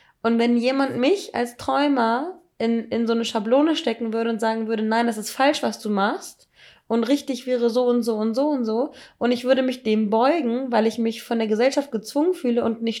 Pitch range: 220-260 Hz